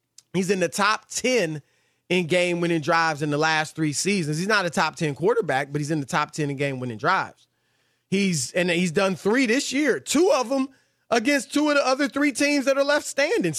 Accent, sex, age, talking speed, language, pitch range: American, male, 30-49, 225 wpm, English, 175-260 Hz